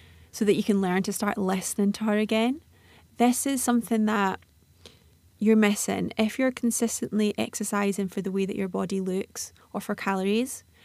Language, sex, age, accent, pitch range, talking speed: English, female, 30-49, British, 190-220 Hz, 170 wpm